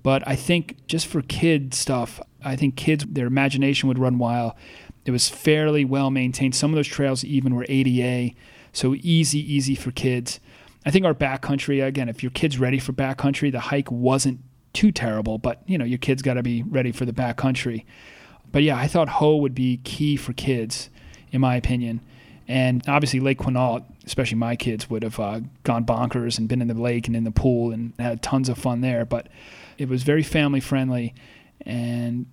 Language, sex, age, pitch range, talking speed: English, male, 30-49, 120-140 Hz, 195 wpm